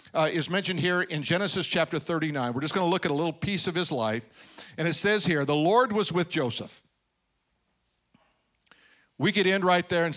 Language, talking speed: English, 205 wpm